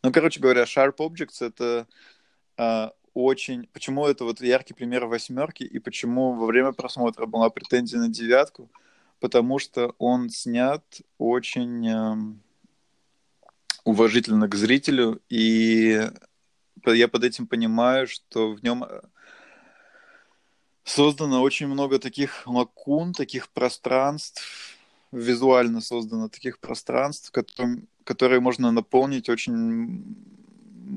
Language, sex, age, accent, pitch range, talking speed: Russian, male, 20-39, native, 115-140 Hz, 110 wpm